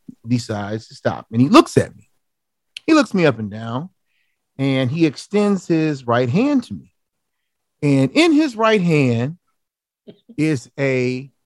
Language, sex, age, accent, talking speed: English, male, 40-59, American, 150 wpm